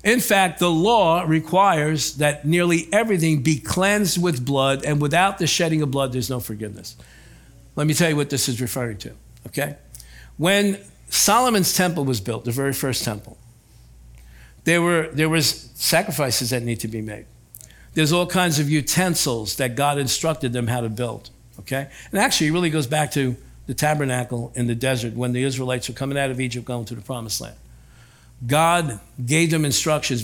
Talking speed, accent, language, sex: 180 wpm, American, English, male